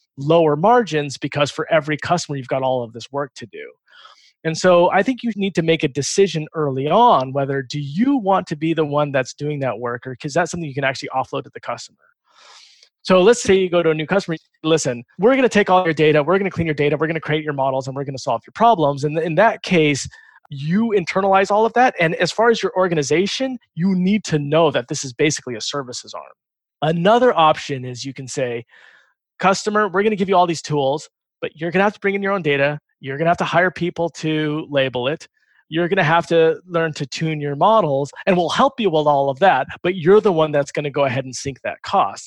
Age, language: 20-39, English